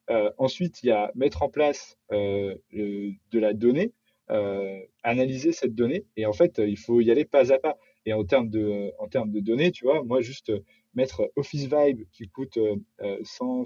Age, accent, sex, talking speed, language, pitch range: 30-49, French, male, 215 wpm, French, 110-155 Hz